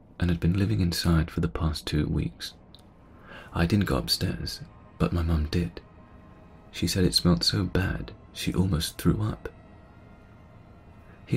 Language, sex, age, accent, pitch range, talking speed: English, male, 30-49, British, 85-105 Hz, 155 wpm